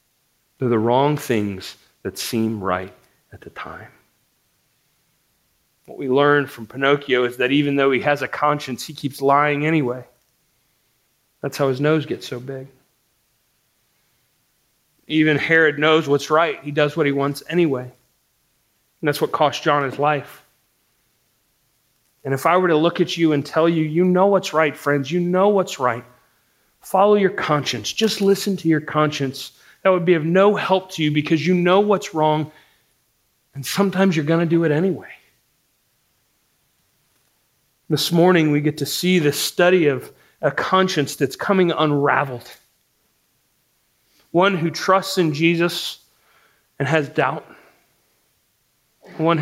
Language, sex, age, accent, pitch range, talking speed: English, male, 40-59, American, 130-165 Hz, 150 wpm